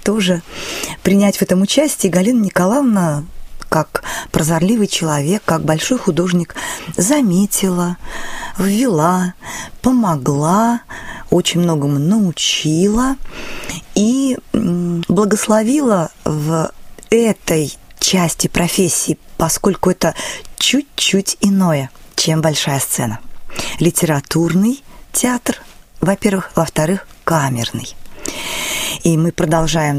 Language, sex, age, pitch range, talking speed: Russian, female, 20-39, 165-210 Hz, 80 wpm